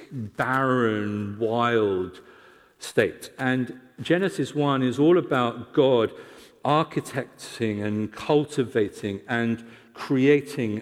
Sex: male